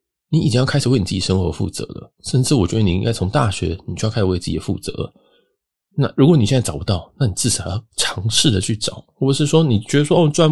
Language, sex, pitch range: Chinese, male, 100-145 Hz